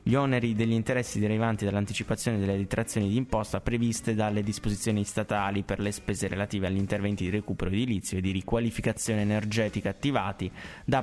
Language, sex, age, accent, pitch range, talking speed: Italian, male, 20-39, native, 105-120 Hz, 160 wpm